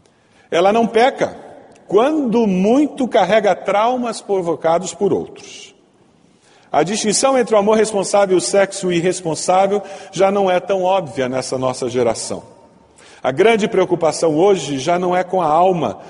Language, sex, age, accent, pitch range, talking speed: Portuguese, male, 40-59, Brazilian, 125-200 Hz, 140 wpm